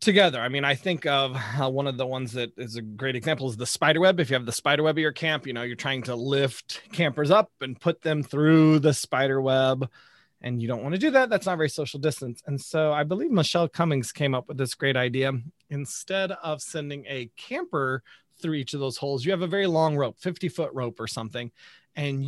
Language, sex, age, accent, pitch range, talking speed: English, male, 30-49, American, 130-165 Hz, 240 wpm